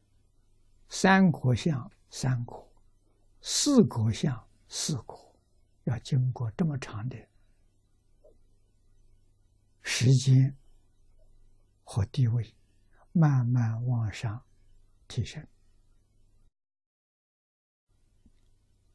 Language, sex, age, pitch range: Chinese, male, 60-79, 100-125 Hz